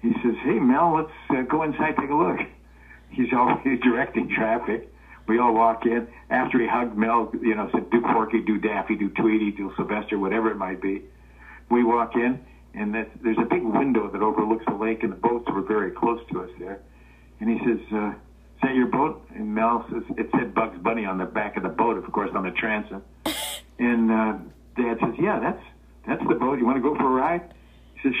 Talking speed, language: 220 wpm, English